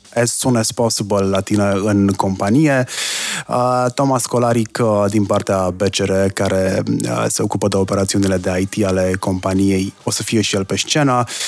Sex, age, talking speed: male, 20-39, 165 wpm